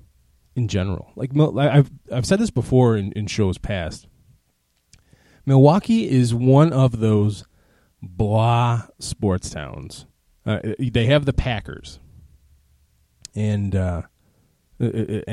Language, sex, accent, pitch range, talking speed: English, male, American, 95-130 Hz, 105 wpm